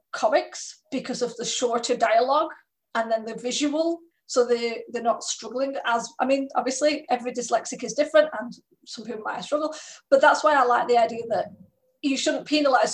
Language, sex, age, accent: English, female, 20-39, British